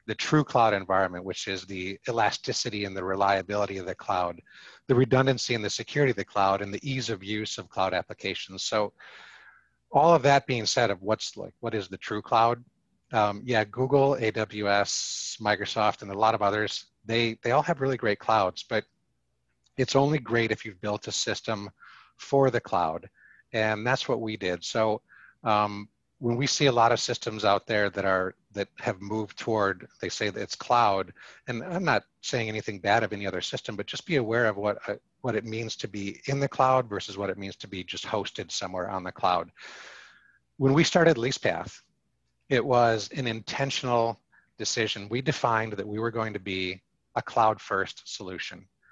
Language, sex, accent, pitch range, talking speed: English, male, American, 100-125 Hz, 195 wpm